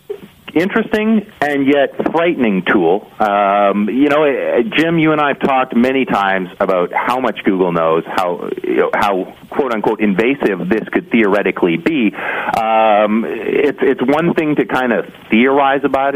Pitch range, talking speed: 90-115 Hz, 150 wpm